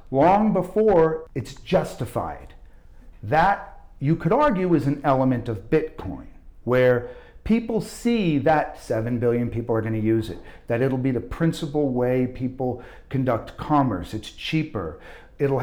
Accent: American